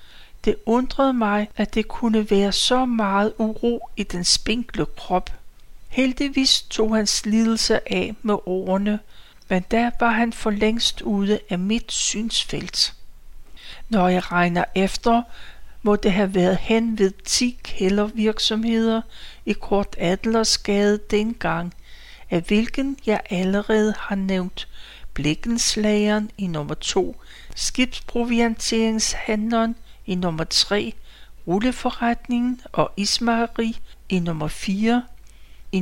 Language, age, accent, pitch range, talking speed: Danish, 60-79, native, 190-230 Hz, 115 wpm